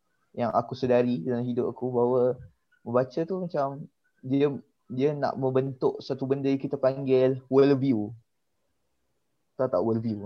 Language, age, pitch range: Malay, 20-39, 120-140 Hz